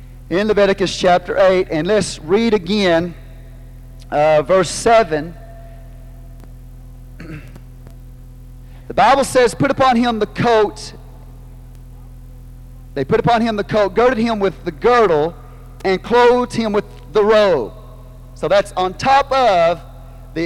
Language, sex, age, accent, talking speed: English, male, 40-59, American, 125 wpm